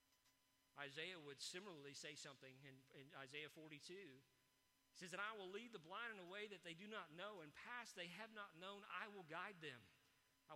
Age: 40-59